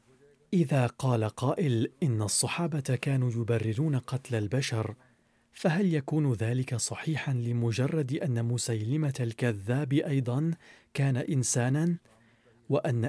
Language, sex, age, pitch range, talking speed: Arabic, male, 40-59, 115-145 Hz, 95 wpm